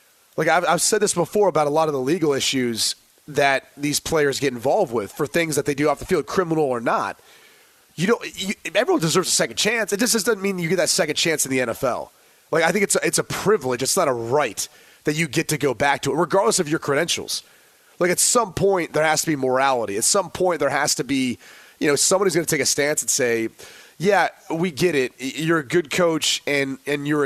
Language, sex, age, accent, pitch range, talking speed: English, male, 30-49, American, 140-180 Hz, 240 wpm